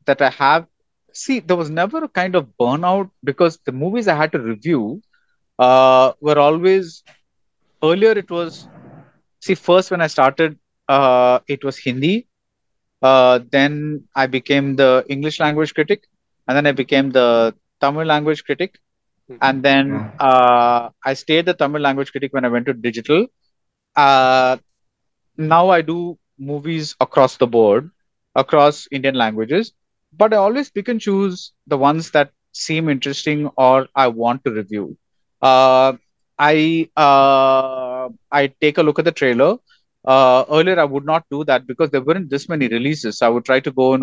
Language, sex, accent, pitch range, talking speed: Tamil, male, native, 130-160 Hz, 165 wpm